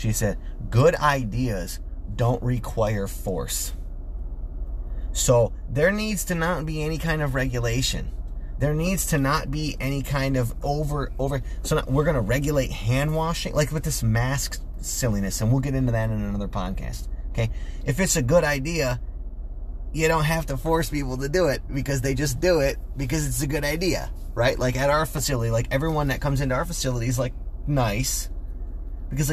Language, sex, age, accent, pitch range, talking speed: English, male, 30-49, American, 95-140 Hz, 180 wpm